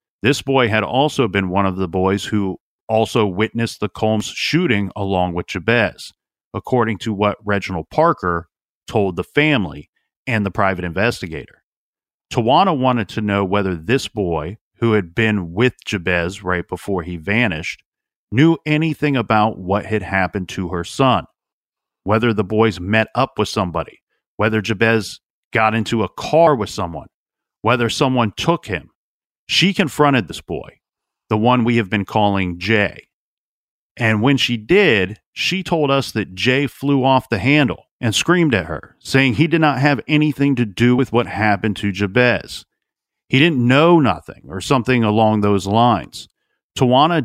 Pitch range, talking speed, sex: 100-125 Hz, 160 wpm, male